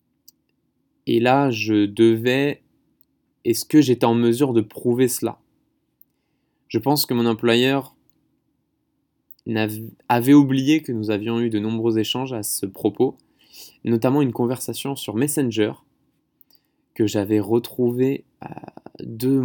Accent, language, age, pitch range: French, French, 20-39, 110-130 Hz